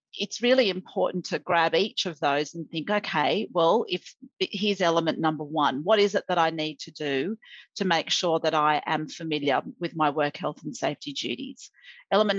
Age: 40-59